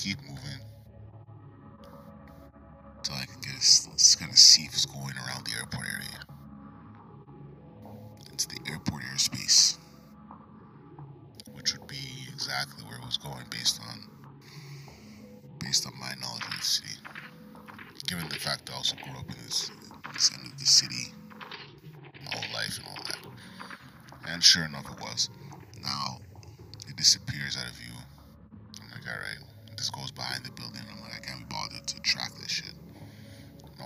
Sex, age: male, 30-49